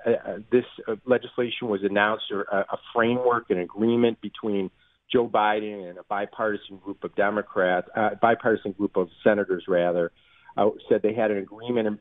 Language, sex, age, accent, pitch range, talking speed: English, male, 40-59, American, 100-120 Hz, 170 wpm